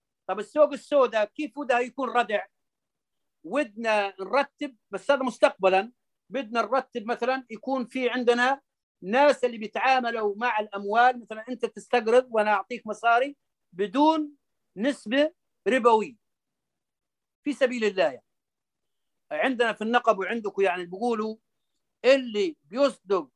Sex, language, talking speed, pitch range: male, Arabic, 115 wpm, 210-270 Hz